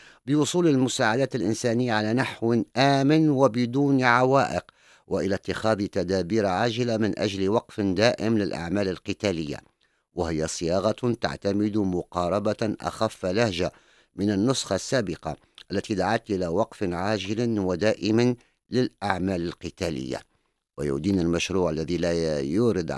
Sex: male